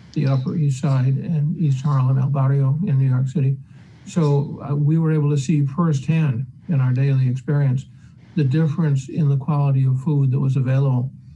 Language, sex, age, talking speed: English, male, 60-79, 185 wpm